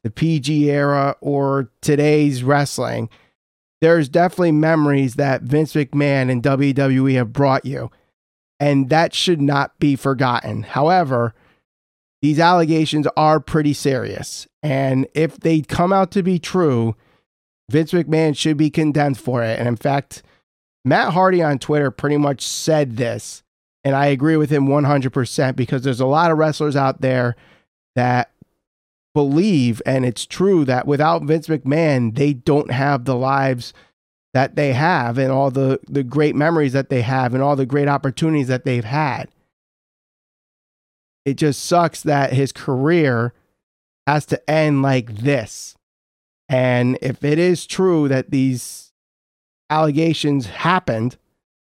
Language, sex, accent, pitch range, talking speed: English, male, American, 125-155 Hz, 145 wpm